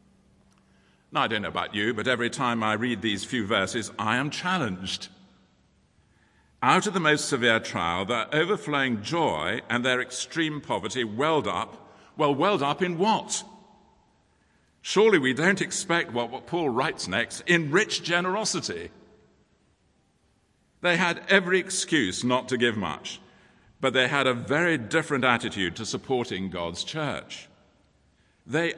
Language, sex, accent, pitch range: English, male, British, 110-175 Hz